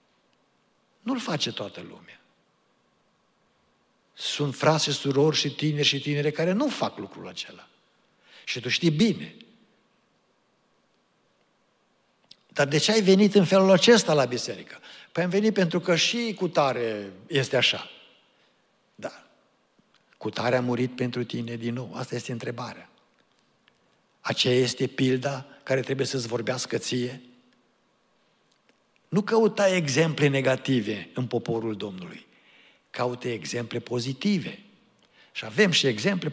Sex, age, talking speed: male, 60-79, 120 wpm